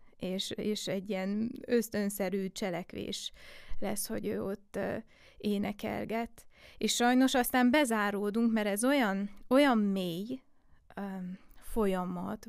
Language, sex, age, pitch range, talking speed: Hungarian, female, 20-39, 205-230 Hz, 110 wpm